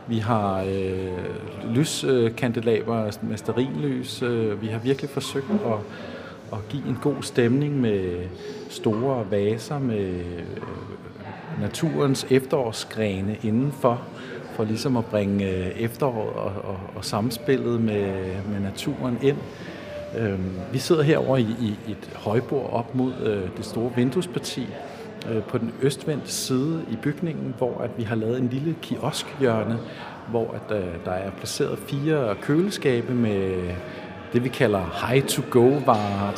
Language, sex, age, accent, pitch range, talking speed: Danish, male, 50-69, native, 105-130 Hz, 120 wpm